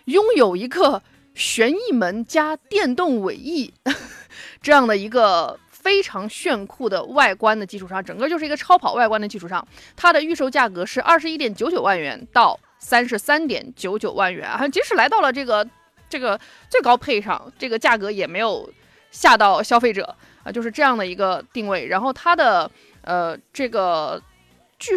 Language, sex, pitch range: Chinese, female, 215-300 Hz